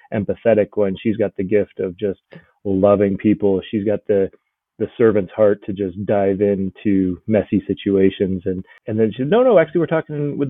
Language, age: English, 30-49